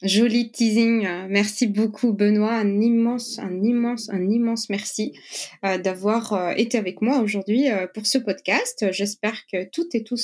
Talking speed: 145 wpm